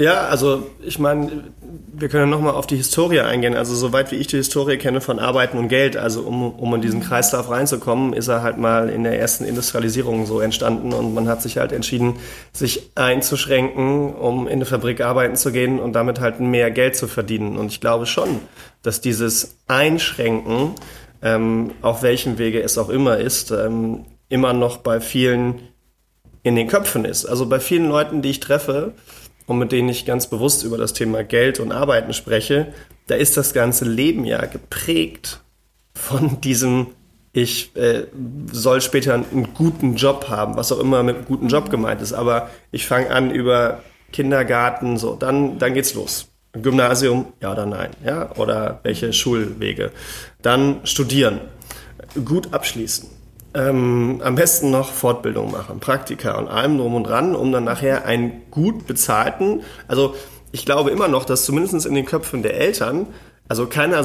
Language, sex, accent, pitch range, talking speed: German, male, German, 115-135 Hz, 175 wpm